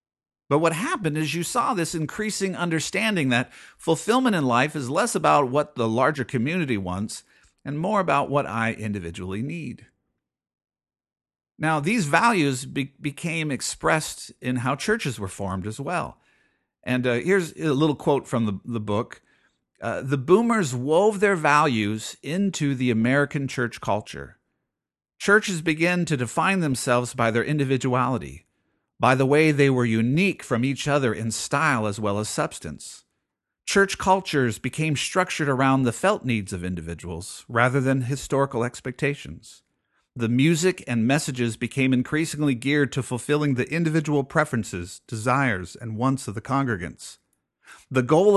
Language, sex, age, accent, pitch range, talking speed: English, male, 50-69, American, 120-155 Hz, 145 wpm